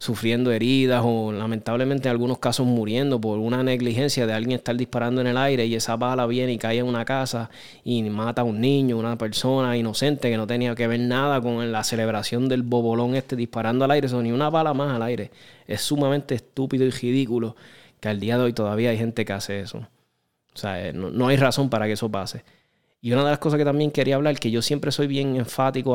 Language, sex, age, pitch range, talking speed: Spanish, male, 20-39, 115-140 Hz, 225 wpm